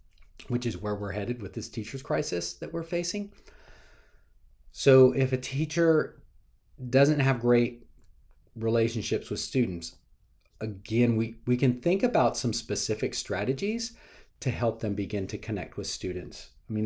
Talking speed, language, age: 145 wpm, English, 40-59